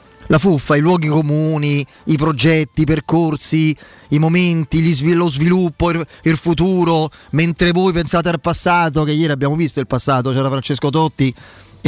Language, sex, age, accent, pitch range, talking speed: Italian, male, 30-49, native, 135-175 Hz, 145 wpm